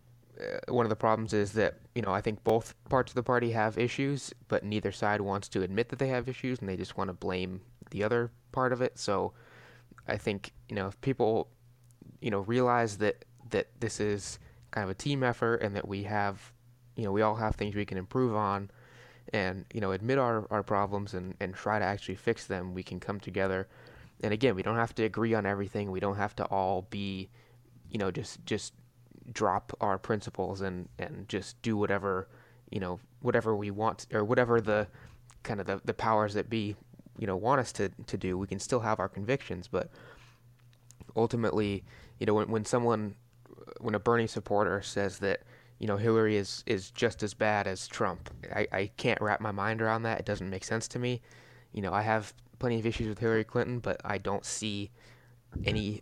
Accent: American